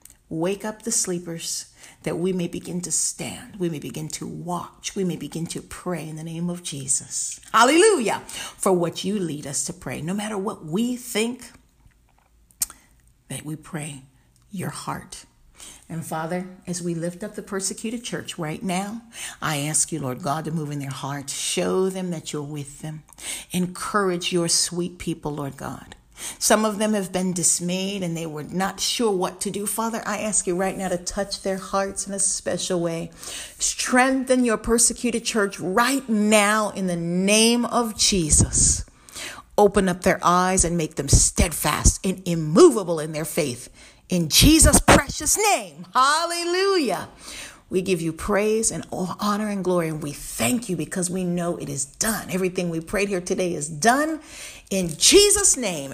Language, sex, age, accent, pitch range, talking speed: English, female, 50-69, American, 155-210 Hz, 175 wpm